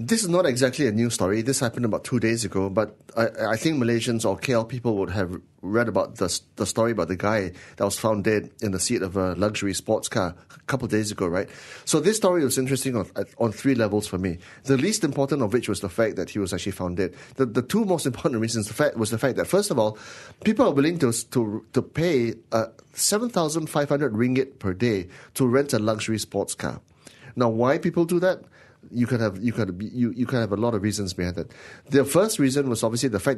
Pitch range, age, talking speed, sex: 105-135 Hz, 30-49, 240 wpm, male